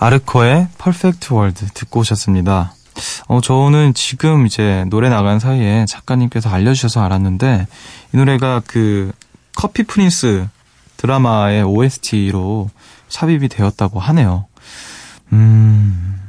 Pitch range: 100-135 Hz